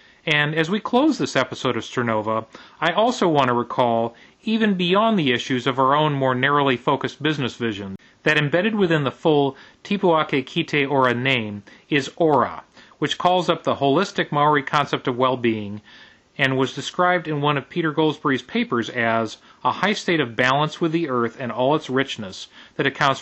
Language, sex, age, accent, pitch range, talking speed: English, male, 40-59, American, 125-165 Hz, 180 wpm